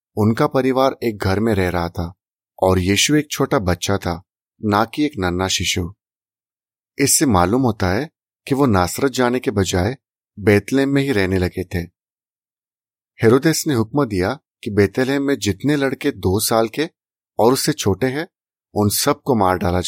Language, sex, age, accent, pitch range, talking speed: Hindi, male, 30-49, native, 95-130 Hz, 165 wpm